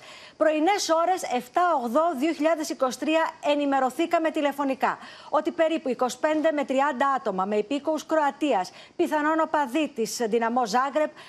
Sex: female